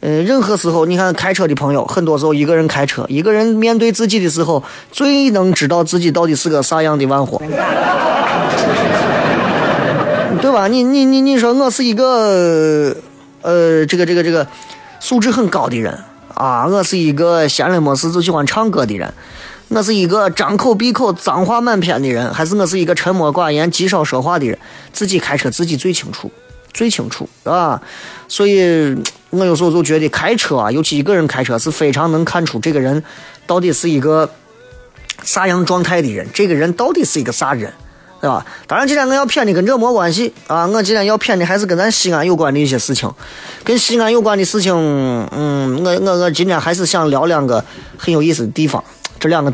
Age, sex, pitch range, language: 20-39, male, 150-205 Hz, Chinese